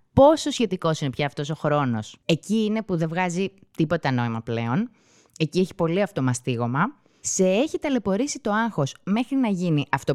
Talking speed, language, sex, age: 165 wpm, Greek, female, 20-39